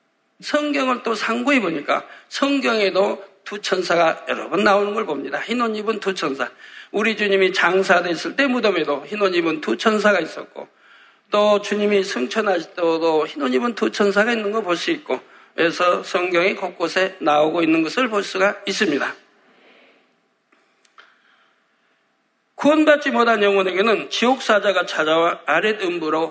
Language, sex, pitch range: Korean, male, 170-225 Hz